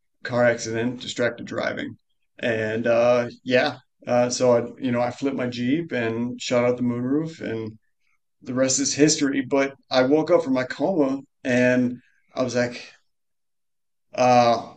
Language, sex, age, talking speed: English, male, 30-49, 155 wpm